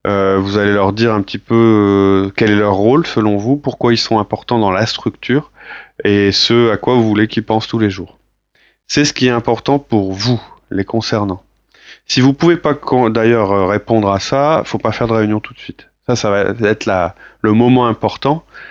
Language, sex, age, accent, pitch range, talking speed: French, male, 30-49, French, 100-120 Hz, 220 wpm